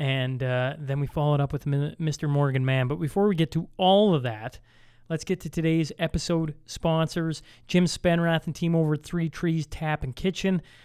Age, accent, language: 30-49, American, English